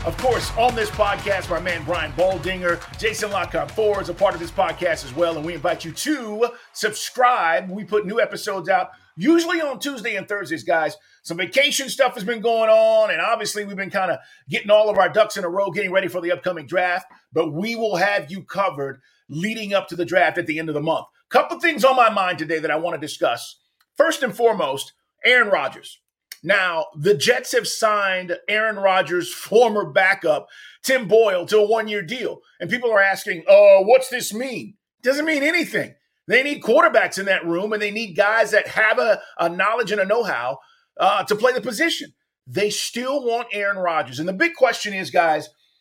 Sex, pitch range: male, 175-240 Hz